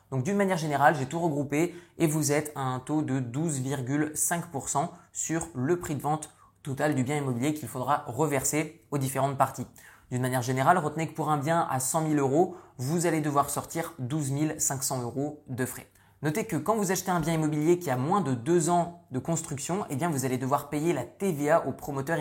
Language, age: French, 20-39